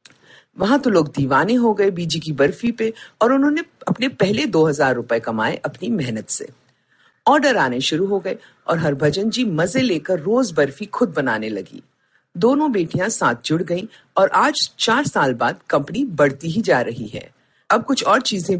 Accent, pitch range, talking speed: native, 150-245 Hz, 175 wpm